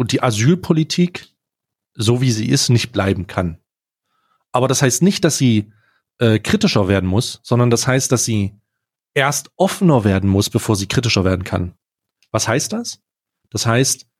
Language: German